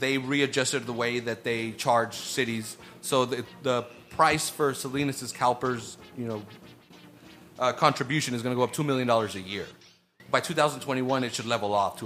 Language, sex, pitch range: English, male, 120-160 Hz